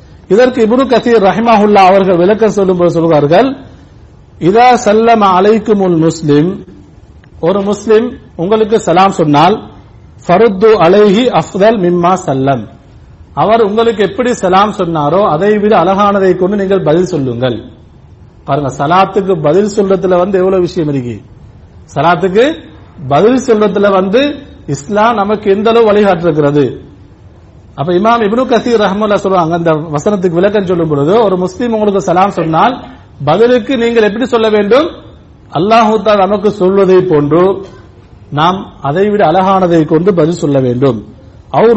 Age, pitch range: 50-69, 155-215 Hz